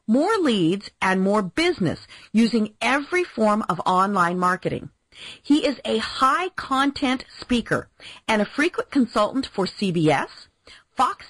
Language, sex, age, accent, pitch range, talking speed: English, female, 40-59, American, 185-280 Hz, 120 wpm